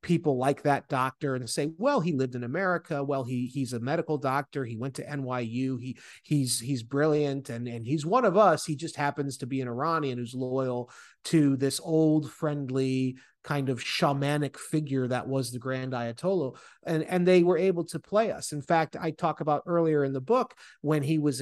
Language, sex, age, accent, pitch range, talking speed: English, male, 30-49, American, 135-170 Hz, 205 wpm